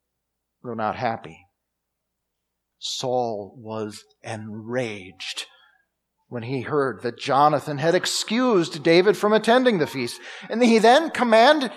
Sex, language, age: male, English, 50-69